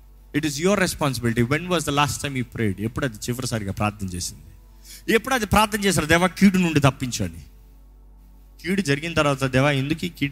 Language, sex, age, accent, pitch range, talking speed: Telugu, male, 30-49, native, 115-190 Hz, 150 wpm